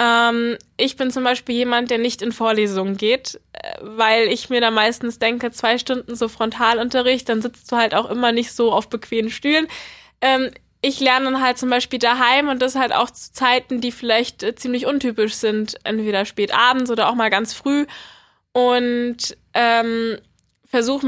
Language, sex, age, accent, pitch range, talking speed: German, female, 10-29, German, 220-250 Hz, 170 wpm